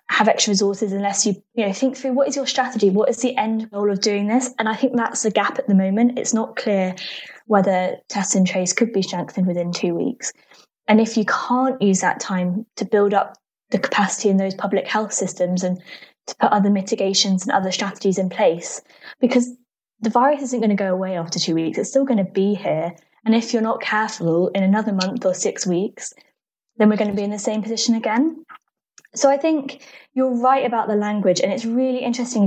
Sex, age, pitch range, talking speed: female, 10-29, 185-230 Hz, 220 wpm